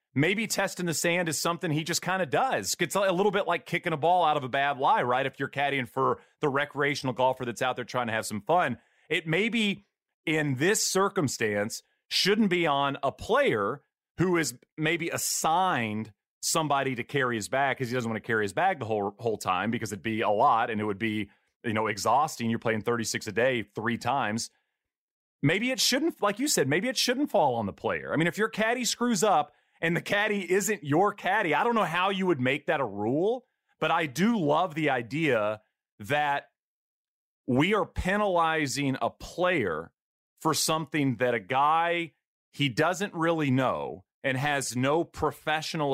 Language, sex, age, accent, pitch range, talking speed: English, male, 30-49, American, 130-185 Hz, 195 wpm